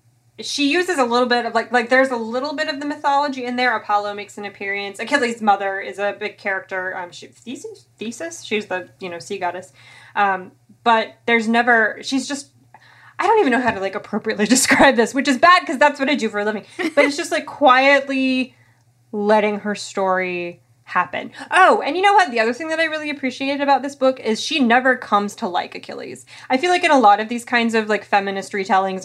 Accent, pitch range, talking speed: American, 195-255 Hz, 225 wpm